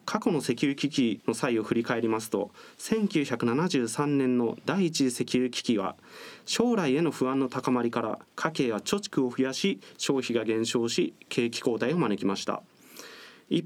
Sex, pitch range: male, 125-195 Hz